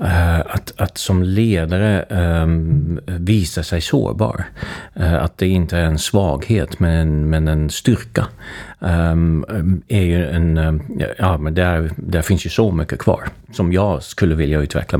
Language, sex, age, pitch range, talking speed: Swedish, male, 40-59, 85-100 Hz, 155 wpm